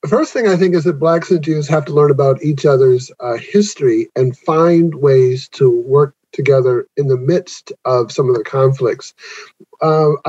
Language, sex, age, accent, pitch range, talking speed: English, male, 50-69, American, 145-175 Hz, 190 wpm